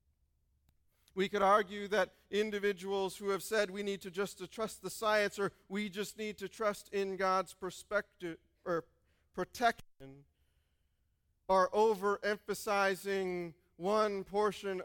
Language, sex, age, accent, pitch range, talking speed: English, male, 40-59, American, 145-205 Hz, 125 wpm